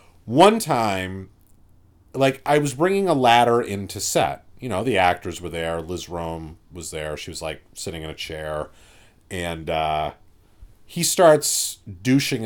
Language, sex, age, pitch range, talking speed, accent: English, male, 40-59, 95-160 Hz, 155 wpm, American